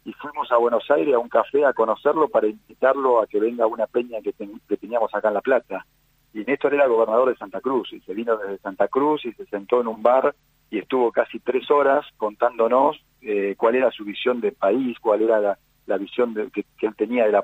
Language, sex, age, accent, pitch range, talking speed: Spanish, male, 40-59, Argentinian, 105-150 Hz, 235 wpm